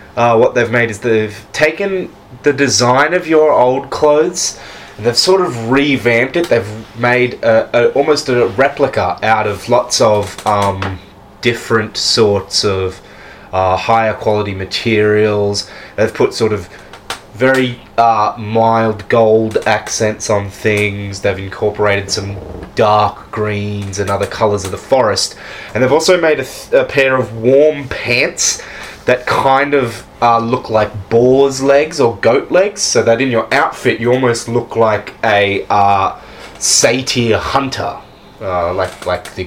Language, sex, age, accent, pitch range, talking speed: English, male, 20-39, Australian, 105-135 Hz, 145 wpm